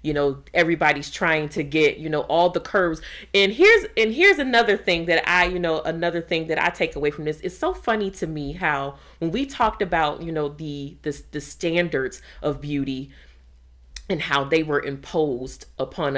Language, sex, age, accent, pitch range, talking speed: English, female, 30-49, American, 145-195 Hz, 195 wpm